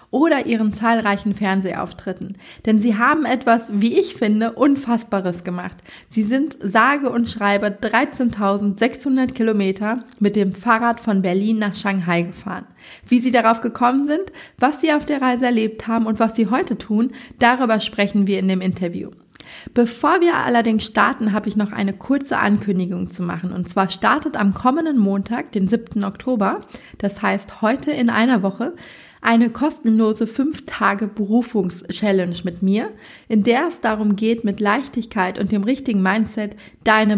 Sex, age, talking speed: female, 20-39, 155 wpm